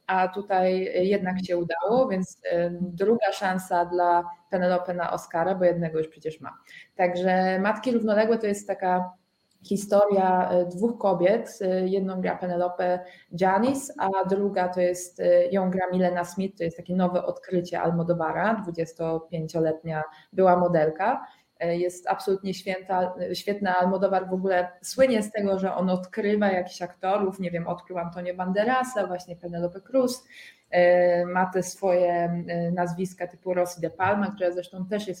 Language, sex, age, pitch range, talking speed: Polish, female, 20-39, 175-200 Hz, 140 wpm